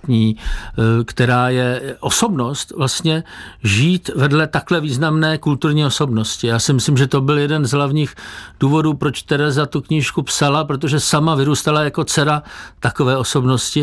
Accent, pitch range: native, 125-155 Hz